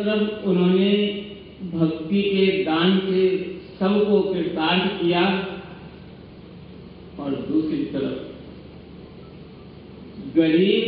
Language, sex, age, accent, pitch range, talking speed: Hindi, male, 50-69, native, 135-185 Hz, 70 wpm